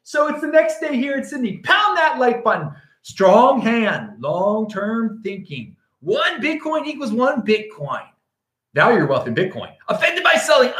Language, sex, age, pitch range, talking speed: English, male, 30-49, 150-220 Hz, 160 wpm